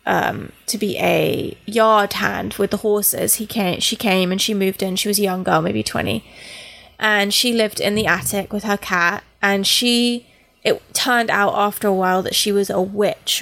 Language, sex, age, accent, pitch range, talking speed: English, female, 20-39, British, 185-230 Hz, 205 wpm